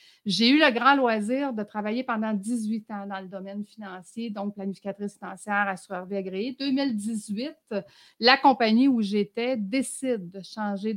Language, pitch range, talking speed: French, 200-240 Hz, 155 wpm